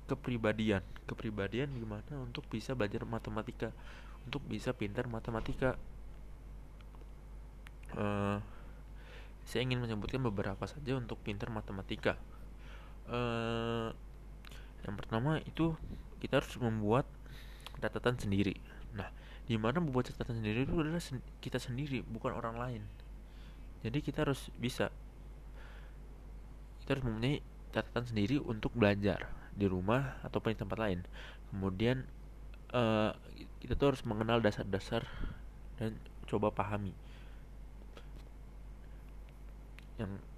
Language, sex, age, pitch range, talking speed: Indonesian, male, 20-39, 110-135 Hz, 105 wpm